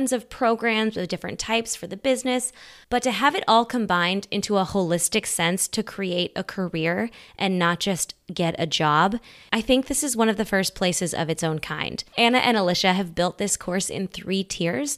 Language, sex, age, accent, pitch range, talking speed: English, female, 20-39, American, 180-230 Hz, 205 wpm